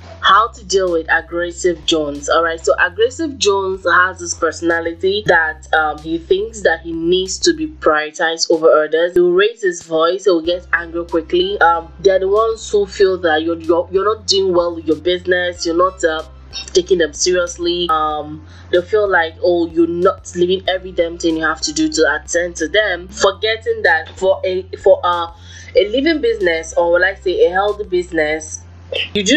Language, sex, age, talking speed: English, female, 20-39, 190 wpm